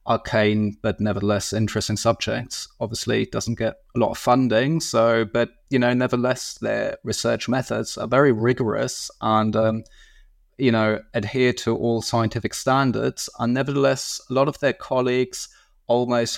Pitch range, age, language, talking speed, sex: 110-125 Hz, 20-39, English, 150 wpm, male